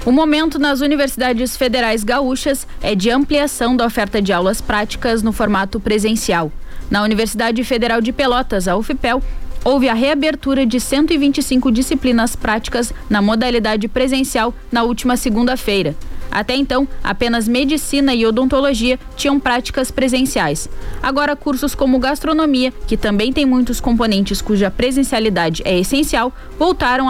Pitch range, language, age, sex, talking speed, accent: 220-270 Hz, Portuguese, 10-29, female, 135 wpm, Brazilian